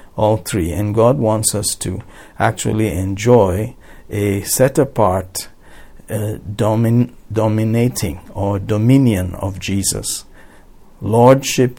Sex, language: male, English